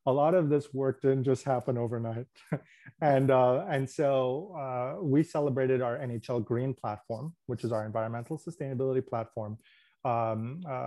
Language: English